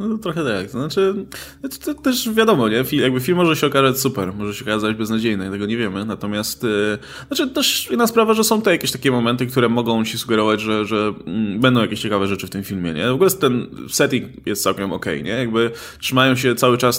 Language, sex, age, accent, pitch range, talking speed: Polish, male, 20-39, native, 110-135 Hz, 235 wpm